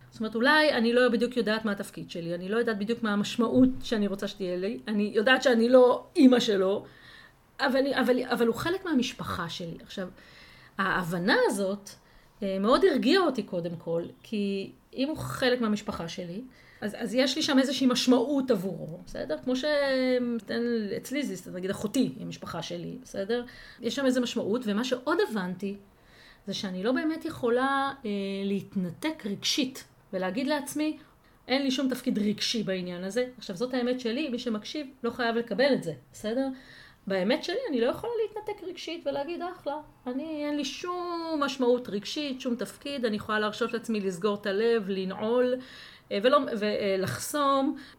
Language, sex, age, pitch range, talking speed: Hebrew, female, 30-49, 205-270 Hz, 155 wpm